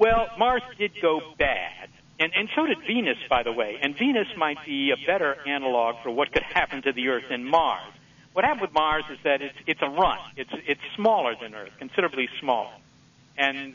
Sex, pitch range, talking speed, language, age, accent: male, 125-155 Hz, 205 wpm, English, 60-79, American